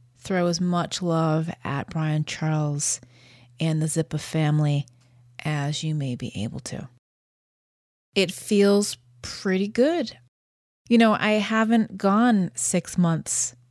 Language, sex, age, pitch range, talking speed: English, female, 30-49, 140-195 Hz, 125 wpm